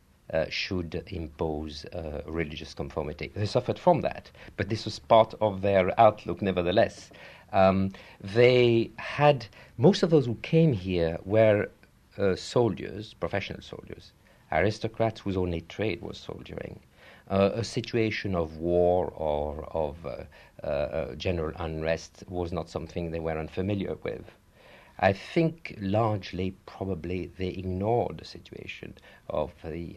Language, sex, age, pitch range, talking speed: English, male, 50-69, 90-115 Hz, 135 wpm